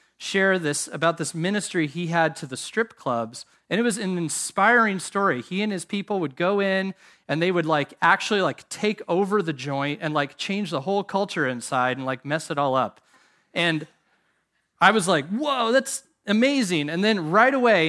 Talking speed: 195 wpm